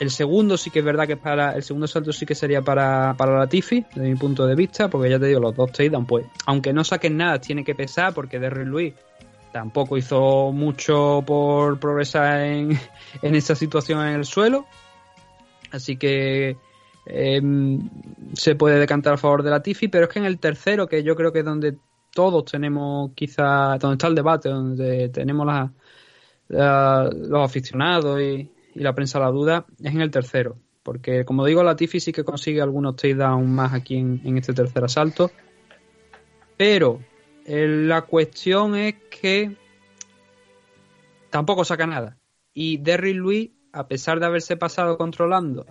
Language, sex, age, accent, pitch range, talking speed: Spanish, male, 20-39, Spanish, 135-165 Hz, 175 wpm